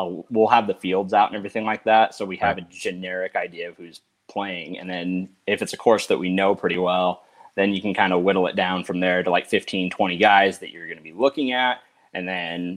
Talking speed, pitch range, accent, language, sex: 250 wpm, 85-100 Hz, American, English, male